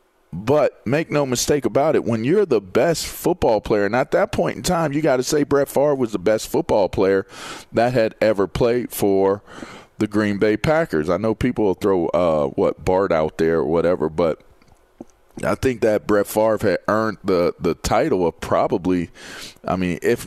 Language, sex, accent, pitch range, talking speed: English, male, American, 100-120 Hz, 195 wpm